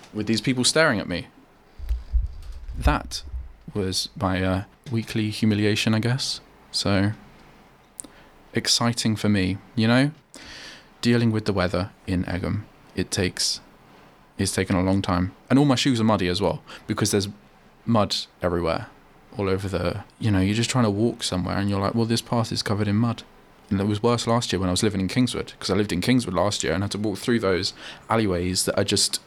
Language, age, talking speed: English, 20-39, 195 wpm